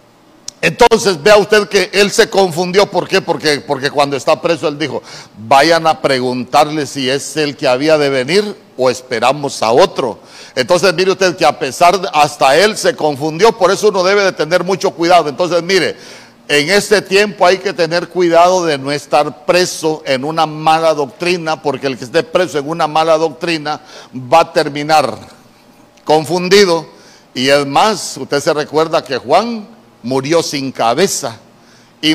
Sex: male